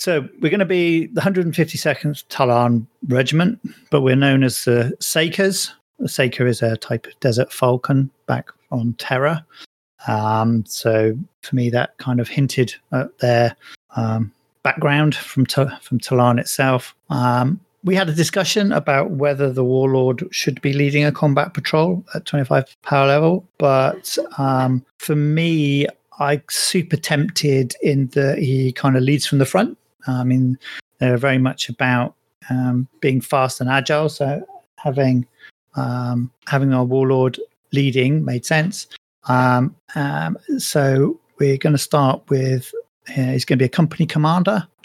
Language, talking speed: English, 155 wpm